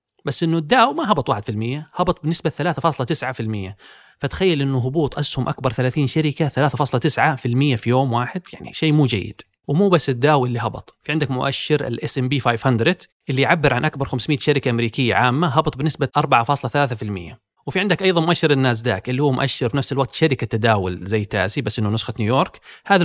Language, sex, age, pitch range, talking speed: Arabic, male, 30-49, 125-160 Hz, 170 wpm